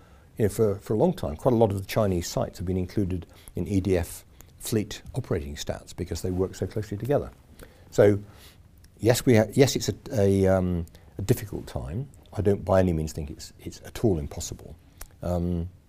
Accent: British